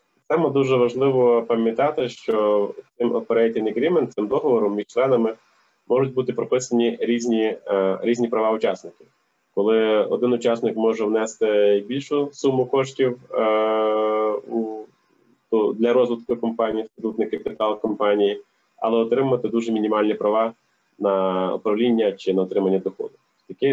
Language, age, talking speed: Ukrainian, 20-39, 120 wpm